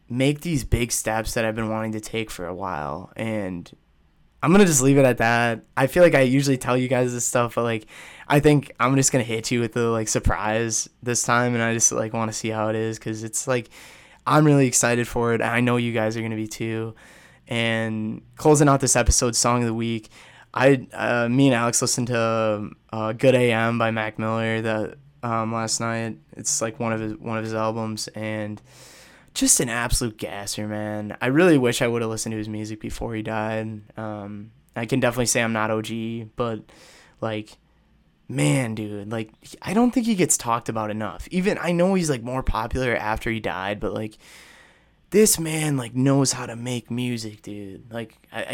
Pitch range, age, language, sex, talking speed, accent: 110-130 Hz, 20-39, English, male, 210 wpm, American